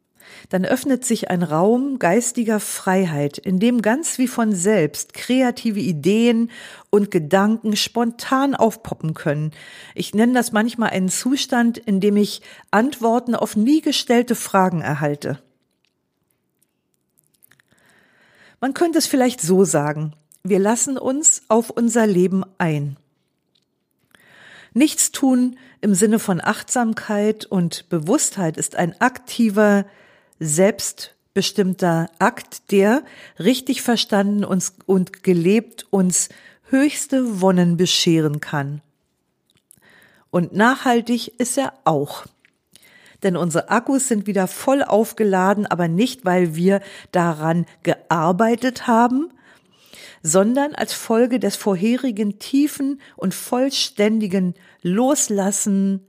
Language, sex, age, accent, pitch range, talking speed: German, female, 50-69, German, 185-240 Hz, 105 wpm